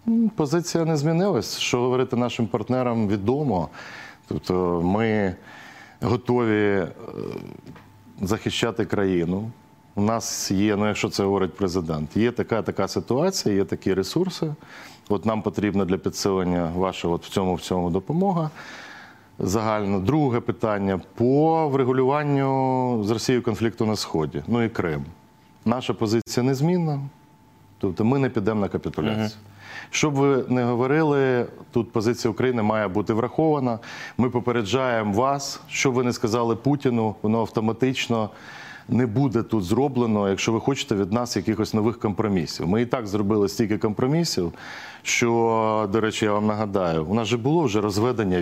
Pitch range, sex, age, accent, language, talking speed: 105-130 Hz, male, 40-59, native, Ukrainian, 135 wpm